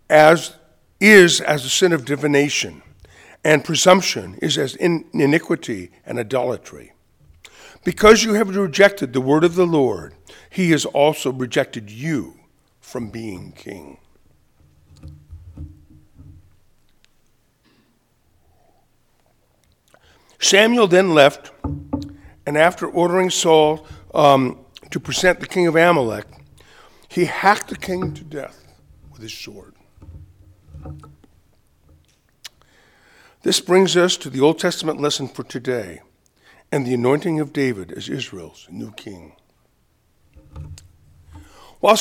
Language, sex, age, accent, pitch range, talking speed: English, male, 50-69, American, 105-180 Hz, 105 wpm